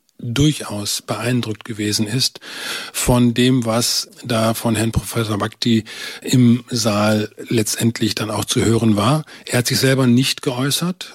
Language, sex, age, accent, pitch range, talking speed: German, male, 40-59, German, 110-135 Hz, 140 wpm